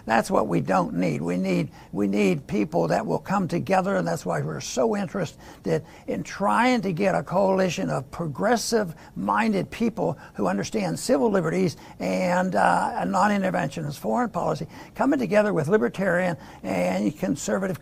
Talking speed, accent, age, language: 150 wpm, American, 60-79, English